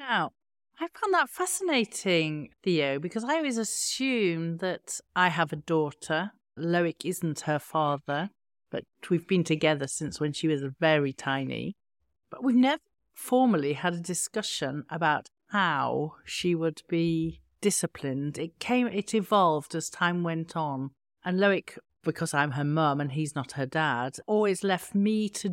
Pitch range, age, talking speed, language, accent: 155-210 Hz, 50-69, 150 wpm, English, British